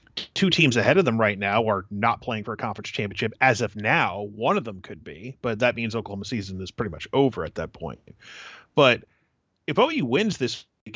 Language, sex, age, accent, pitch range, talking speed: English, male, 30-49, American, 115-140 Hz, 215 wpm